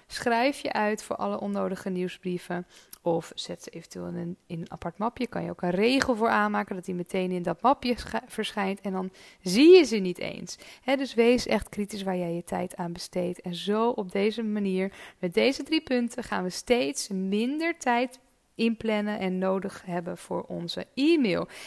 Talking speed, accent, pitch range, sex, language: 190 wpm, Dutch, 190-255 Hz, female, Dutch